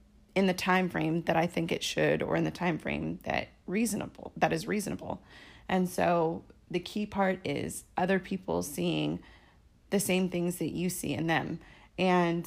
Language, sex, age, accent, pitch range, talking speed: English, female, 30-49, American, 170-200 Hz, 180 wpm